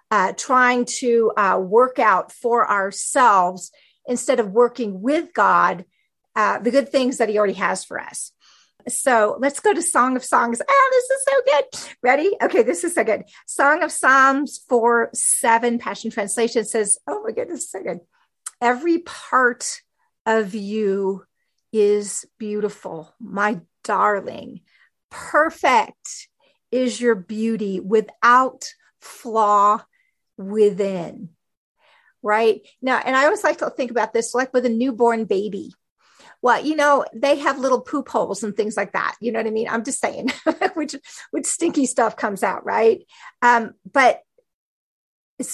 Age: 40-59